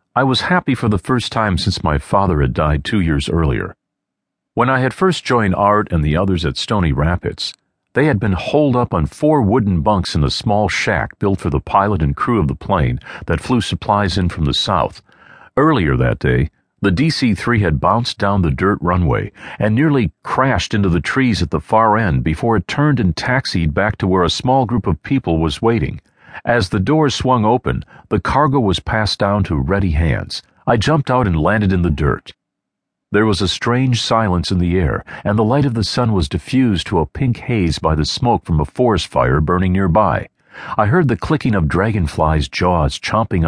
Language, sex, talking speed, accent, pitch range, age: English, male, 205 wpm, American, 85-120 Hz, 50-69